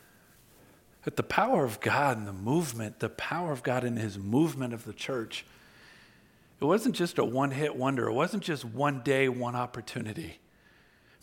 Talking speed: 170 wpm